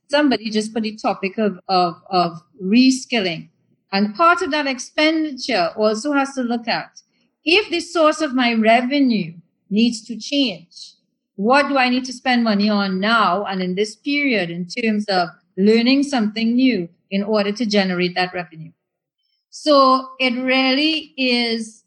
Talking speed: 155 wpm